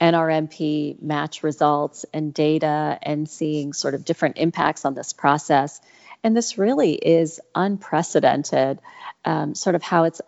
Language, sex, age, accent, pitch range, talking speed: English, female, 40-59, American, 155-185 Hz, 140 wpm